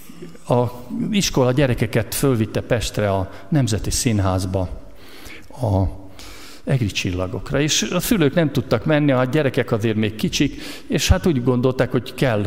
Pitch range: 100-135 Hz